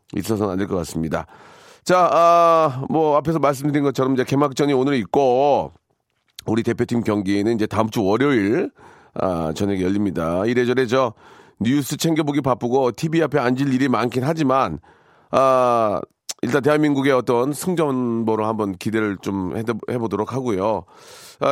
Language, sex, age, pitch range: Korean, male, 40-59, 115-165 Hz